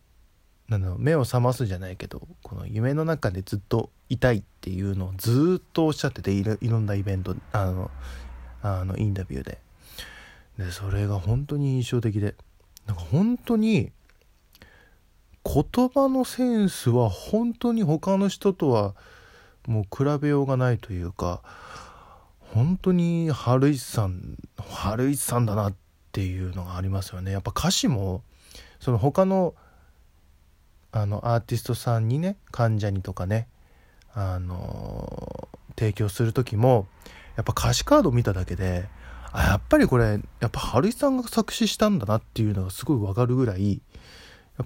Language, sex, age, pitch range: Japanese, male, 20-39, 95-135 Hz